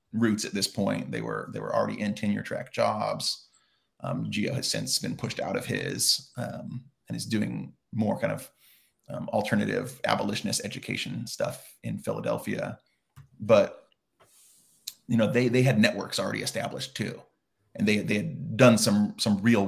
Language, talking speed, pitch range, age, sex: English, 165 wpm, 105-120 Hz, 30-49, male